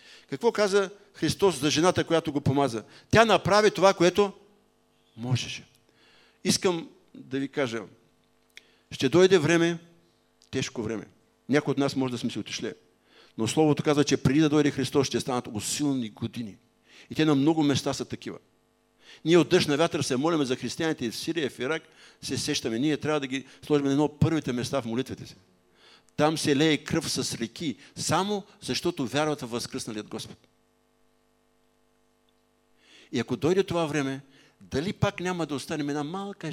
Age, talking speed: 50-69, 165 wpm